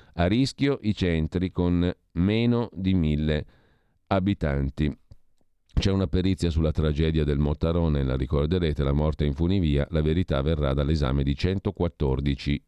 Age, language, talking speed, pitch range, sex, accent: 50-69, Italian, 135 wpm, 80-100 Hz, male, native